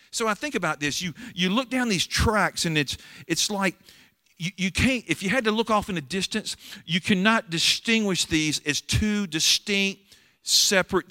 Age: 50-69